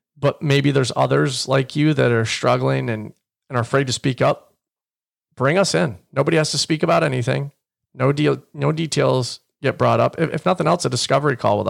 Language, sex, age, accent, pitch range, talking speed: English, male, 40-59, American, 125-155 Hz, 205 wpm